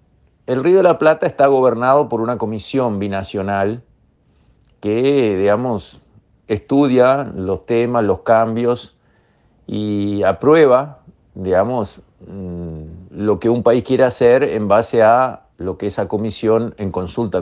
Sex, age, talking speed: male, 50-69, 125 wpm